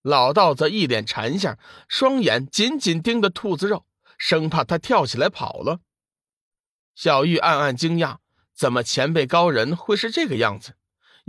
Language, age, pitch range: Chinese, 50-69, 125-195 Hz